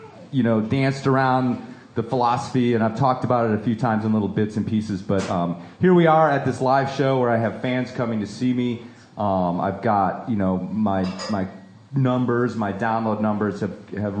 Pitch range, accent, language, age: 100-125 Hz, American, English, 30-49